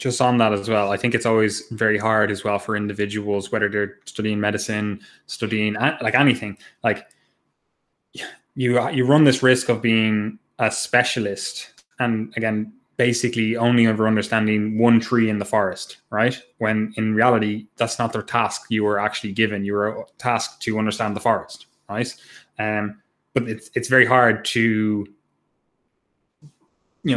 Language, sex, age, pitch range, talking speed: English, male, 20-39, 105-120 Hz, 155 wpm